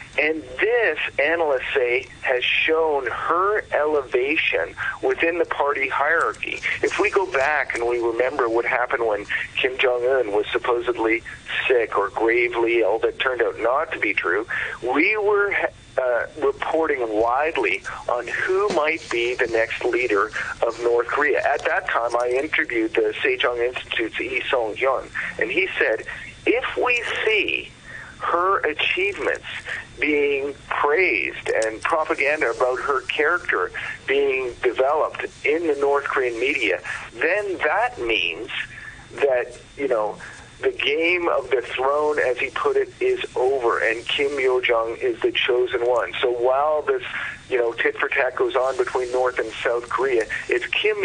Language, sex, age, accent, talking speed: English, male, 50-69, American, 145 wpm